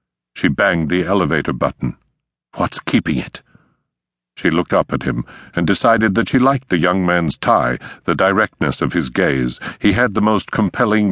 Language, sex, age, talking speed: English, male, 60-79, 175 wpm